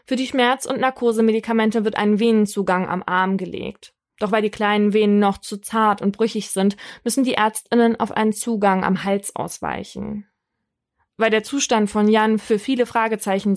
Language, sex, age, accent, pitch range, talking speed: German, female, 20-39, German, 195-225 Hz, 175 wpm